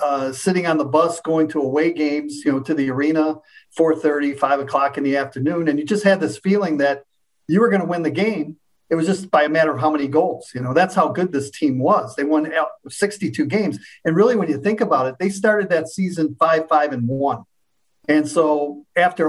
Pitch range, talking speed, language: 145-180 Hz, 230 wpm, English